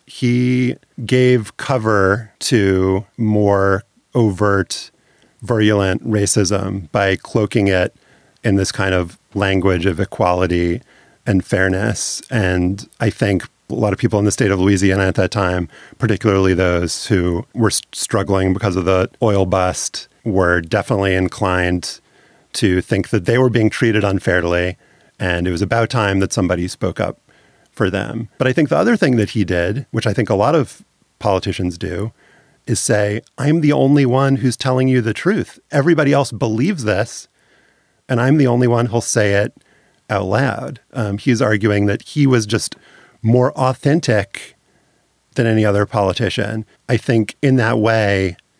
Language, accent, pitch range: English, American, 95-120 Hz